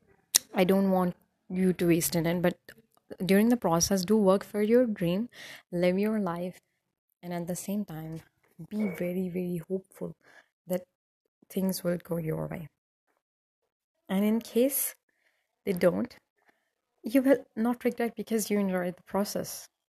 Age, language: 20-39, English